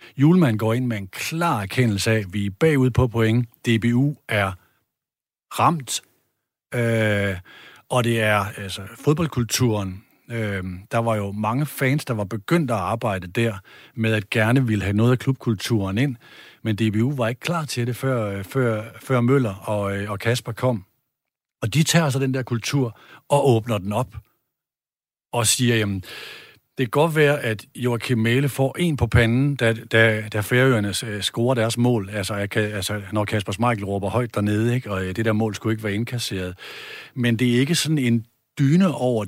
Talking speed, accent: 180 wpm, native